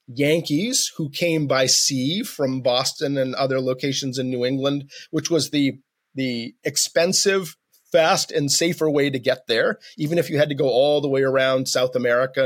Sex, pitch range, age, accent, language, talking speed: male, 130-170 Hz, 30-49, American, English, 180 wpm